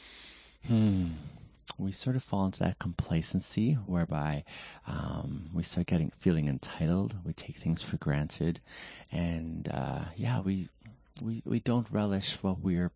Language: English